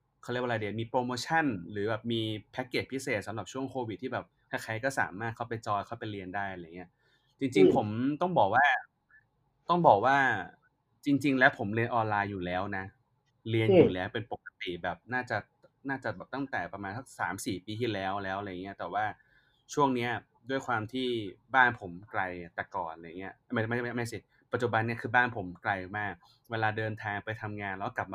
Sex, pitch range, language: male, 100-125 Hz, Thai